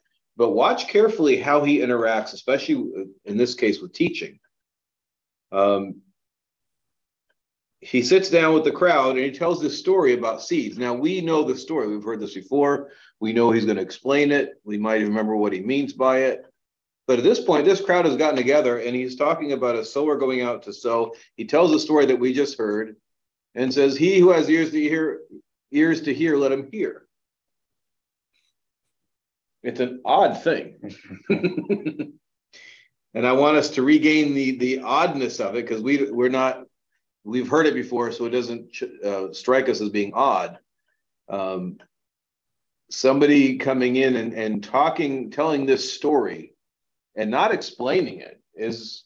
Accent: American